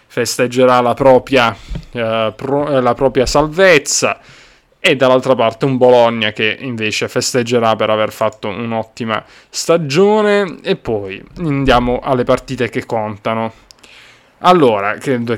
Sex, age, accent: male, 20-39, native